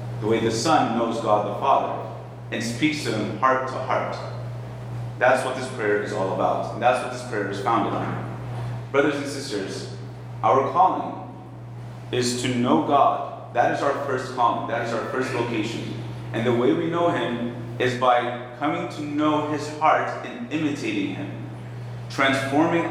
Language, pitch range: English, 115-130 Hz